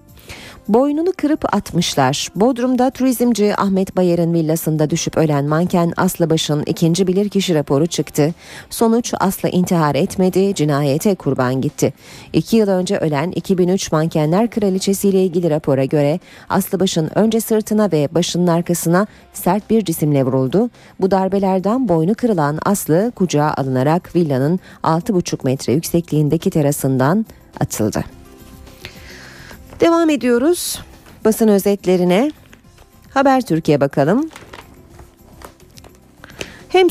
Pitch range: 155-220 Hz